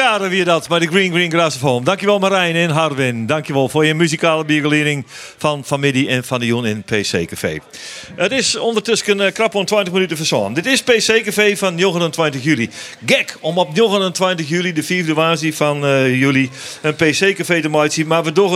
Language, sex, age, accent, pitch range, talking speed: Dutch, male, 50-69, Dutch, 125-175 Hz, 200 wpm